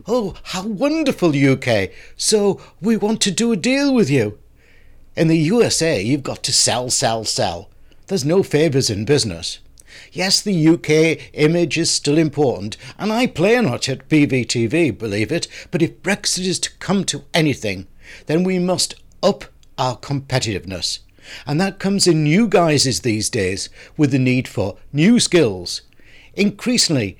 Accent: British